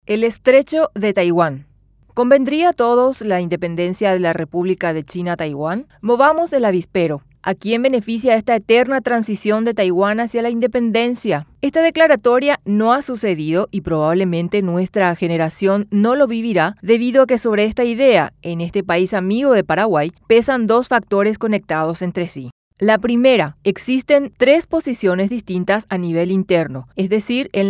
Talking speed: 150 wpm